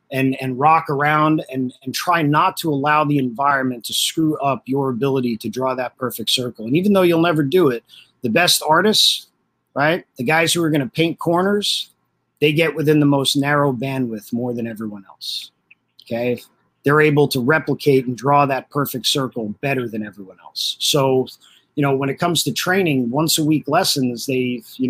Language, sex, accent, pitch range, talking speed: English, male, American, 125-150 Hz, 190 wpm